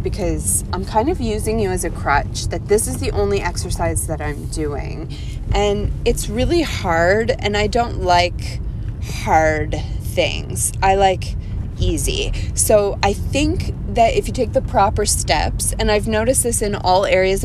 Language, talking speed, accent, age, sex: English, 165 wpm, American, 20-39, female